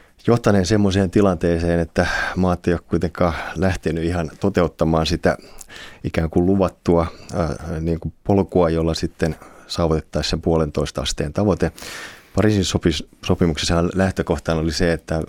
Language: Finnish